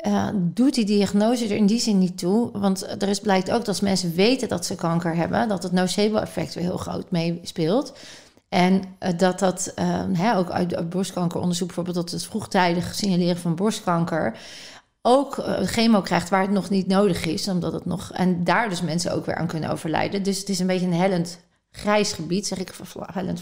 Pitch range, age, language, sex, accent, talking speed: 180-205 Hz, 40-59, Dutch, female, Dutch, 210 wpm